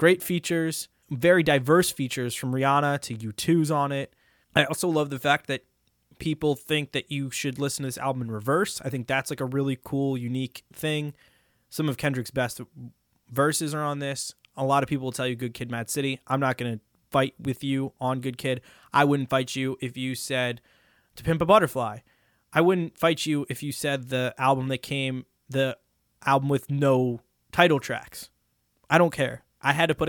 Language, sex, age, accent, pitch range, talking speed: English, male, 20-39, American, 120-145 Hz, 200 wpm